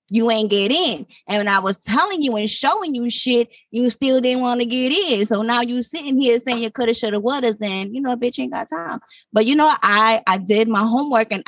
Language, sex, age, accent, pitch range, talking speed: English, female, 20-39, American, 215-255 Hz, 260 wpm